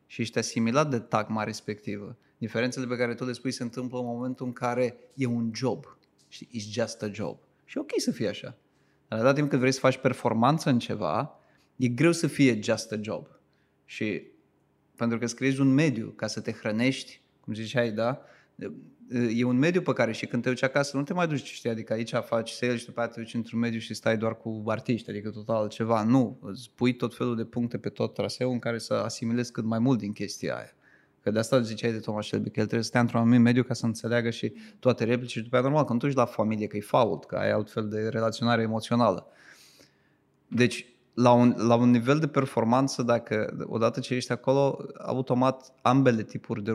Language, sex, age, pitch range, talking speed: Romanian, male, 20-39, 115-130 Hz, 220 wpm